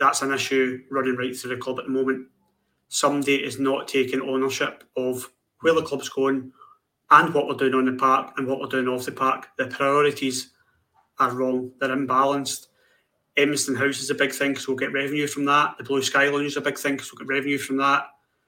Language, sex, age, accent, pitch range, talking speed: English, male, 30-49, British, 130-140 Hz, 215 wpm